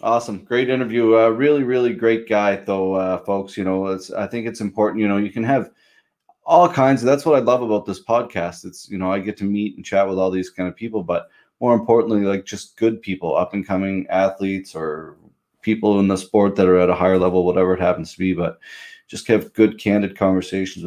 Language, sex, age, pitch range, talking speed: English, male, 30-49, 95-115 Hz, 235 wpm